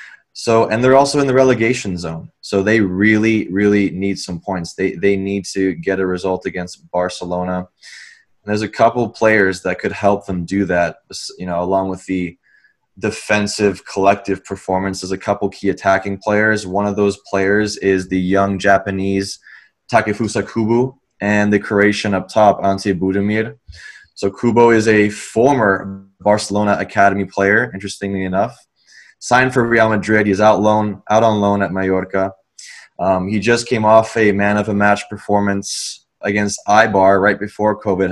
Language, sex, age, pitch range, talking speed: English, male, 20-39, 95-105 Hz, 165 wpm